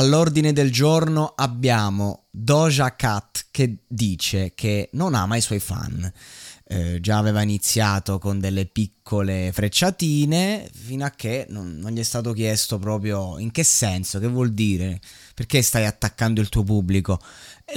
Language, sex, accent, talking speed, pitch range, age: Italian, male, native, 150 wpm, 100-130 Hz, 30-49